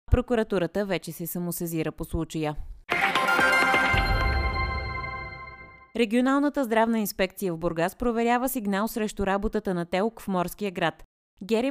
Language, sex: Bulgarian, female